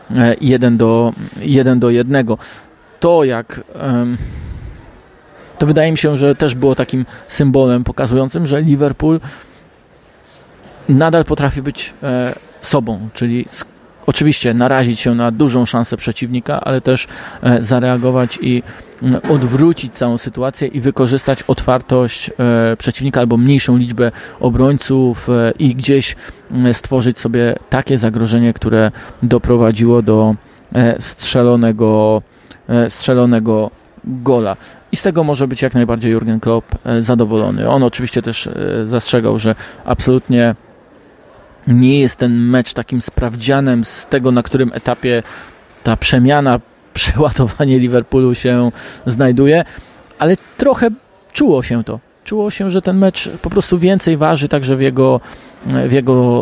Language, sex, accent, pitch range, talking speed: Polish, male, native, 120-135 Hz, 115 wpm